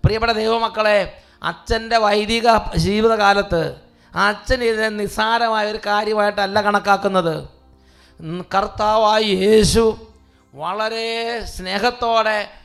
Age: 20-39